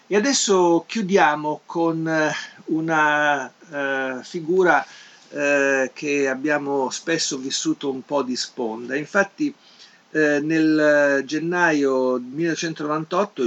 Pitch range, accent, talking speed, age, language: 130-165 Hz, native, 95 wpm, 50-69, Italian